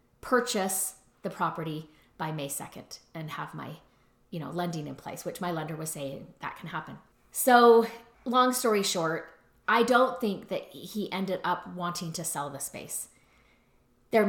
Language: English